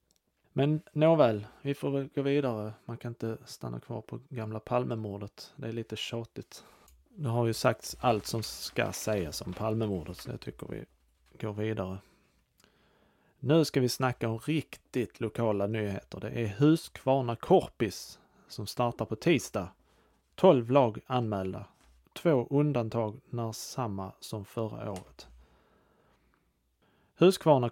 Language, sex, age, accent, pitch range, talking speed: Swedish, male, 30-49, Norwegian, 110-135 Hz, 130 wpm